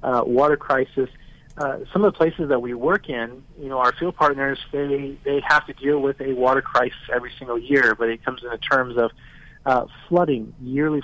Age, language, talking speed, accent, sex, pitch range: 40-59, English, 210 wpm, American, male, 130-150 Hz